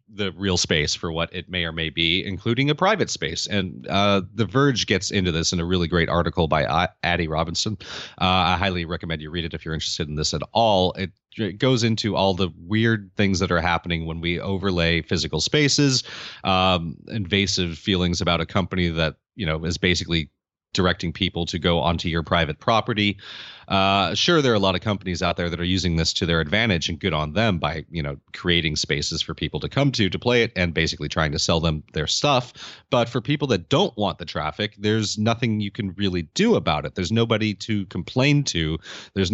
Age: 30-49